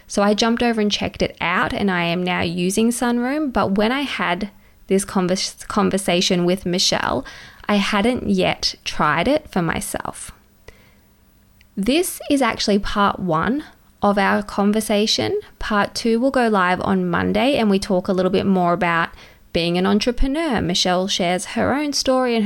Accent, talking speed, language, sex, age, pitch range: Australian, 165 wpm, English, female, 20-39, 180-225 Hz